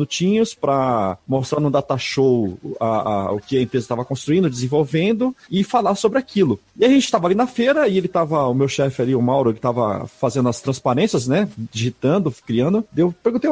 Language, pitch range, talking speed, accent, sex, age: Portuguese, 140-225 Hz, 200 wpm, Brazilian, male, 40-59